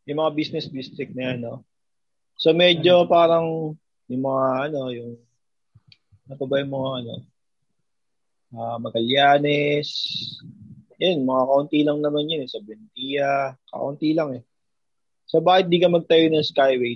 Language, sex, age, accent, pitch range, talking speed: Filipino, male, 20-39, native, 130-165 Hz, 140 wpm